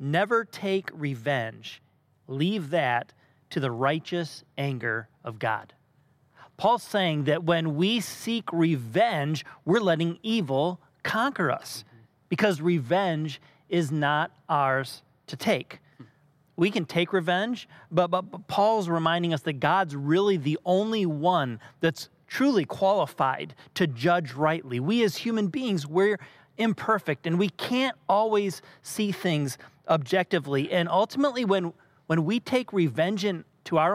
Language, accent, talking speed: English, American, 130 wpm